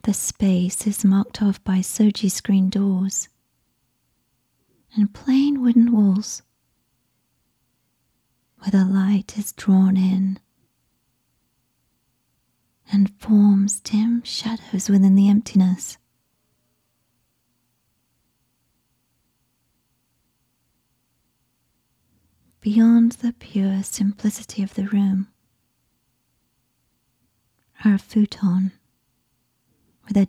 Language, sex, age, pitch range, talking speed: English, female, 30-49, 135-205 Hz, 70 wpm